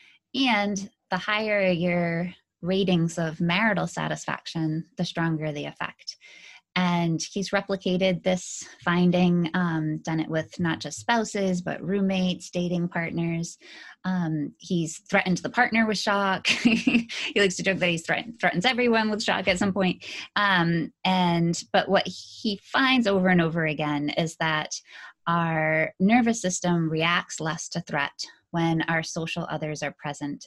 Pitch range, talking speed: 160-190 Hz, 145 wpm